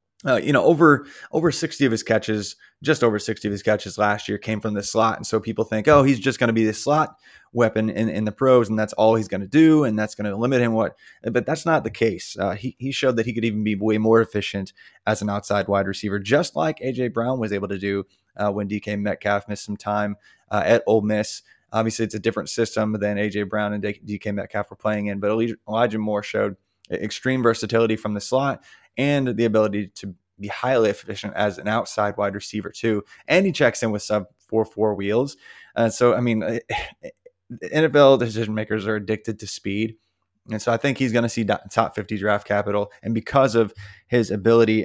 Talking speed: 225 wpm